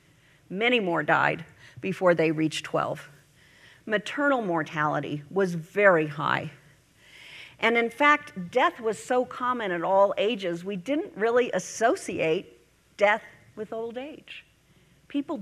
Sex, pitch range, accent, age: female, 160-240 Hz, American, 50-69